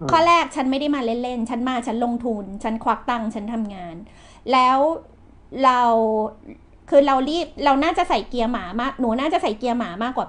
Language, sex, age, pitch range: Thai, female, 30-49, 235-325 Hz